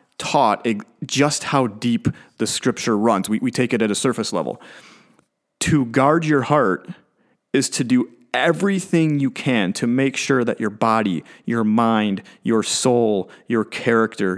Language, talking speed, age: English, 155 wpm, 30-49